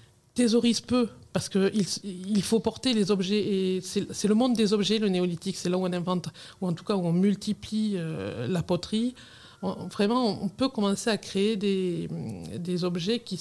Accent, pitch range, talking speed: French, 175-210 Hz, 195 wpm